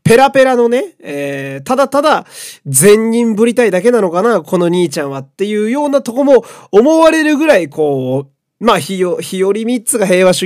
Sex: male